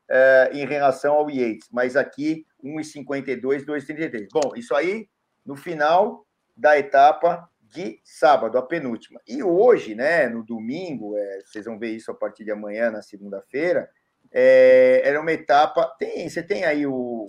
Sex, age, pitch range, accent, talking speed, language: male, 50-69, 125-180 Hz, Brazilian, 155 wpm, Portuguese